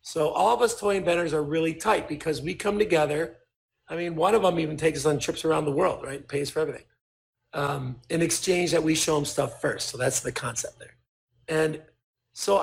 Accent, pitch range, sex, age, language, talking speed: American, 145-190 Hz, male, 40-59, English, 220 wpm